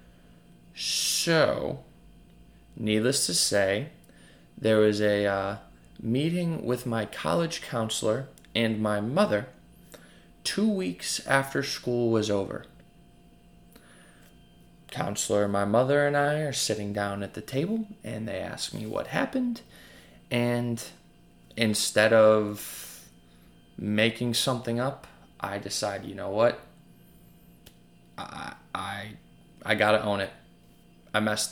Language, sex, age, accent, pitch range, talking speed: English, male, 20-39, American, 100-120 Hz, 110 wpm